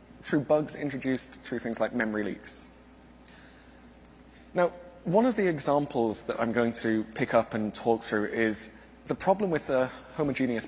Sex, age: male, 20-39